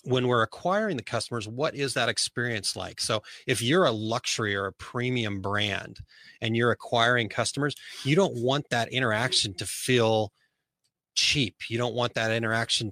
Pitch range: 105-130 Hz